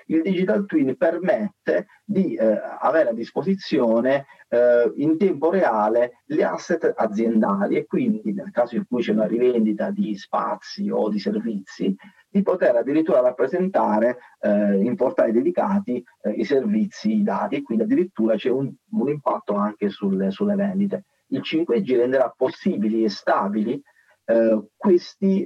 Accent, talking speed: native, 145 wpm